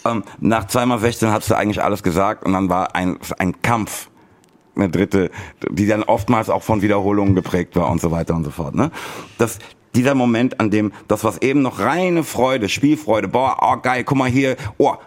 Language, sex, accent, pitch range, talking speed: German, male, German, 90-115 Hz, 205 wpm